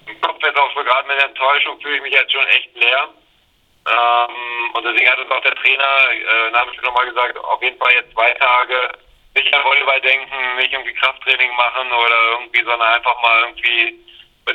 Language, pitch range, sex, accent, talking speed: German, 120-140 Hz, male, German, 200 wpm